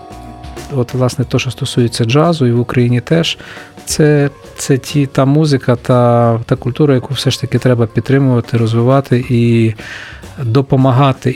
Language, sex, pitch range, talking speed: Ukrainian, male, 120-145 Hz, 145 wpm